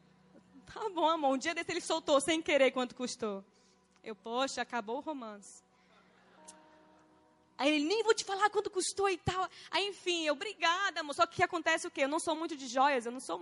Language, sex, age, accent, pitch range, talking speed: Portuguese, female, 10-29, Brazilian, 275-350 Hz, 225 wpm